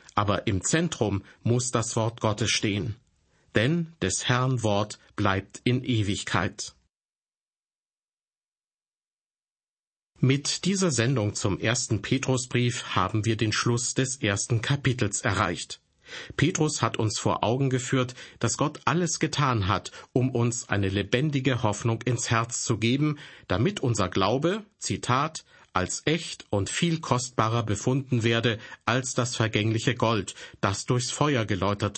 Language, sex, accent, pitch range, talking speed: German, male, German, 105-130 Hz, 125 wpm